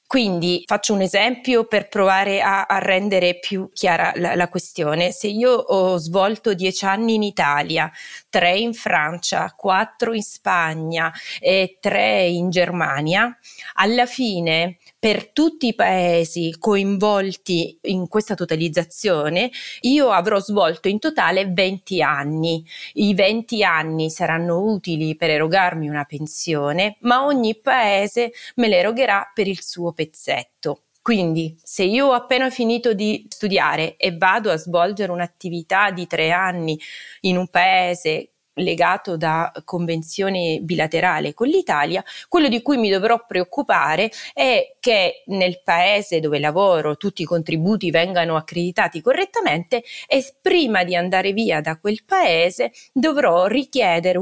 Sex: female